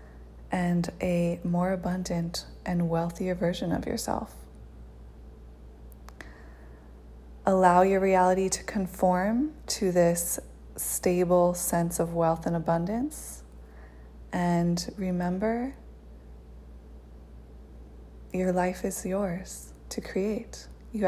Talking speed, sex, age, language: 90 wpm, female, 20-39, English